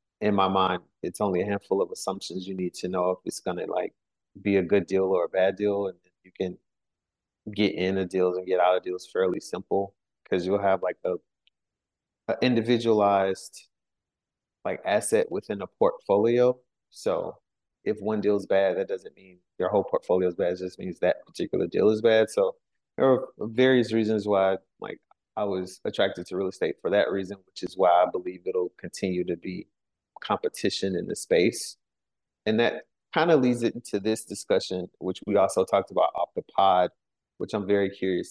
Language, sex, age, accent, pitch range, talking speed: English, male, 30-49, American, 95-125 Hz, 195 wpm